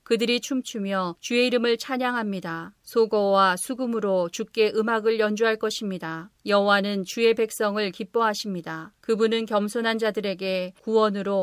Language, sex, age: Korean, female, 40-59